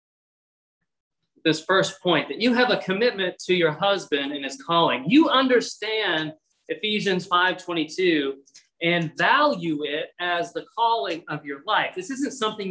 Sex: male